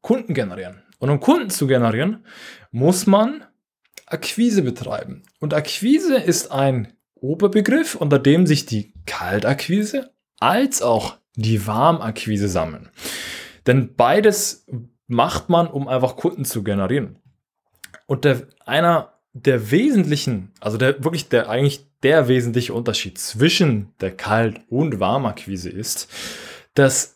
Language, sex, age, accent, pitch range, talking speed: German, male, 20-39, German, 110-160 Hz, 120 wpm